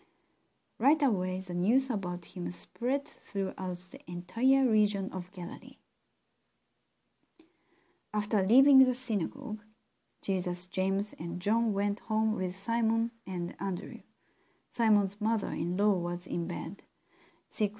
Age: 40-59